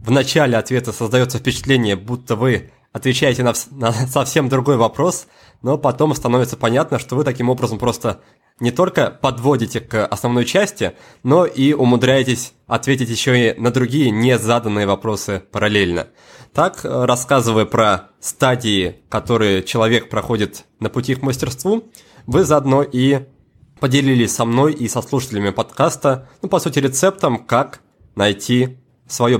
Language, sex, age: Russian, male, 20-39